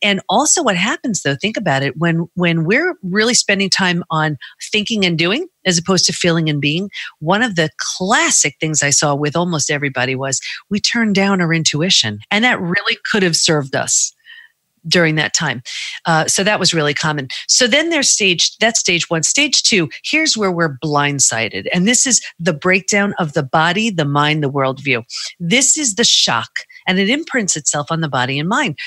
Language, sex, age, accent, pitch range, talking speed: English, female, 40-59, American, 160-215 Hz, 195 wpm